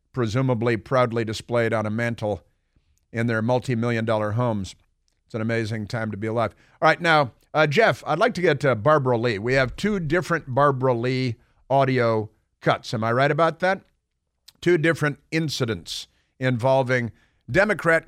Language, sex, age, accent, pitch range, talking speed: English, male, 50-69, American, 115-150 Hz, 160 wpm